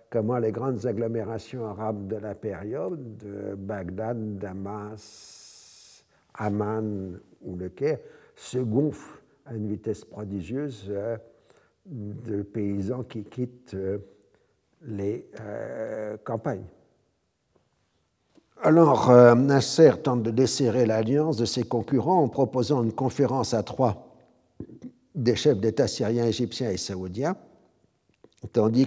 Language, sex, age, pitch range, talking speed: French, male, 60-79, 105-130 Hz, 100 wpm